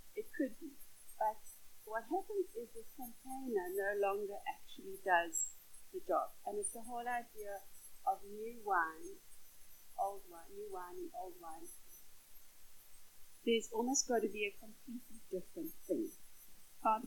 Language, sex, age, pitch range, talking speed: English, female, 30-49, 210-345 Hz, 145 wpm